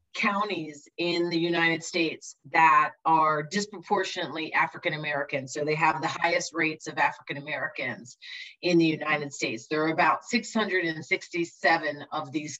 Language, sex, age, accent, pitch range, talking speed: English, female, 40-59, American, 150-185 Hz, 130 wpm